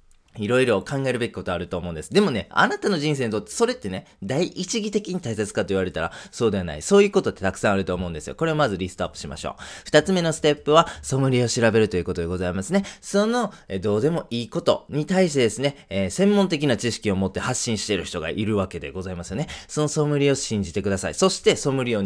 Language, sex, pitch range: Japanese, male, 95-150 Hz